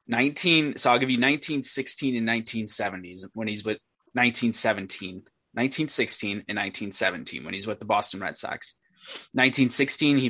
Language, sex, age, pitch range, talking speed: English, male, 20-39, 105-125 Hz, 140 wpm